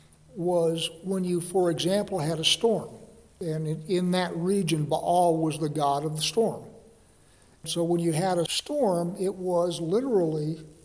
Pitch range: 160-190 Hz